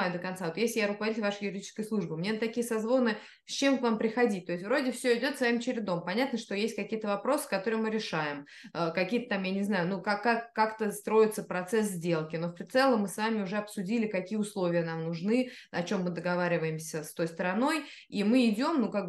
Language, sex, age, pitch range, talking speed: Russian, female, 20-39, 185-245 Hz, 215 wpm